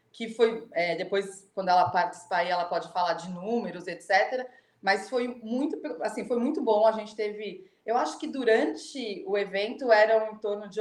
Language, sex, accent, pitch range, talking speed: Portuguese, female, Brazilian, 190-250 Hz, 185 wpm